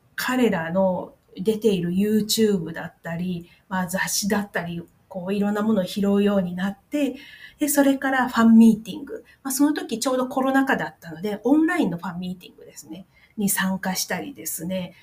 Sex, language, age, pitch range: female, Japanese, 40-59, 185-230 Hz